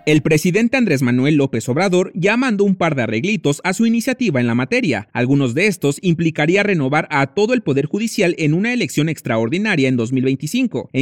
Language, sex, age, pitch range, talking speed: Spanish, male, 30-49, 130-200 Hz, 190 wpm